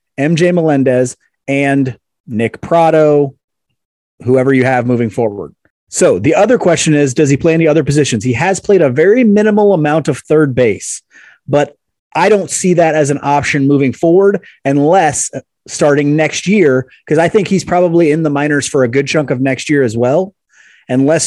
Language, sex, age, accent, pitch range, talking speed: English, male, 30-49, American, 130-165 Hz, 180 wpm